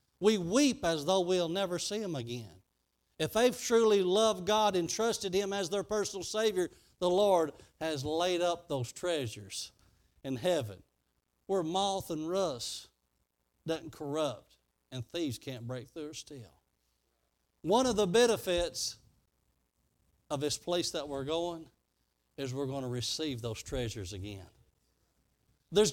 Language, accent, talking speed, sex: English, American, 140 wpm, male